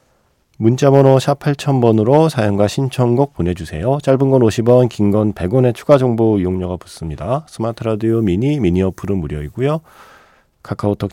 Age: 40-59